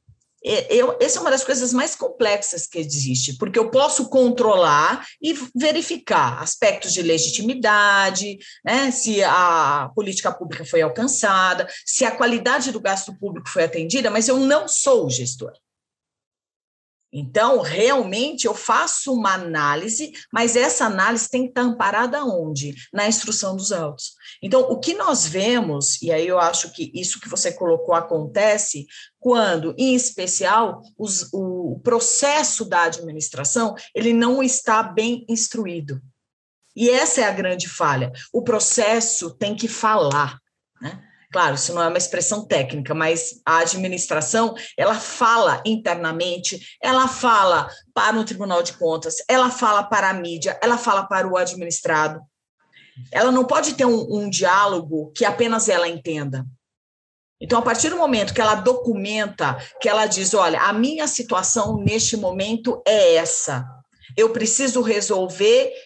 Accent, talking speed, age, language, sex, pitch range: Brazilian, 145 wpm, 40-59, Portuguese, female, 170-250 Hz